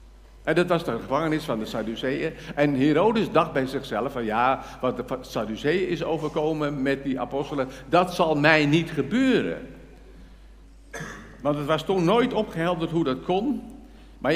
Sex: male